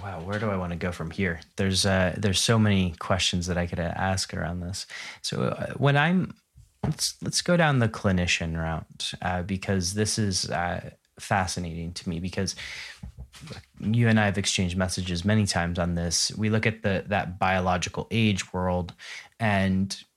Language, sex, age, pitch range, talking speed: English, male, 20-39, 90-110 Hz, 180 wpm